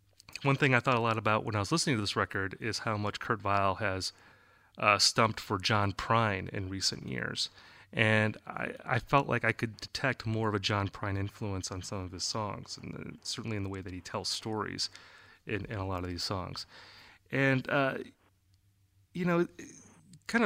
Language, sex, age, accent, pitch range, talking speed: English, male, 30-49, American, 100-130 Hz, 195 wpm